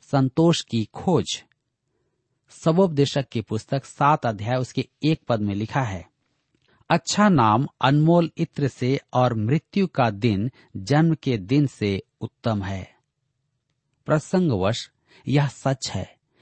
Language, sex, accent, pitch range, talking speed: Hindi, male, native, 115-150 Hz, 120 wpm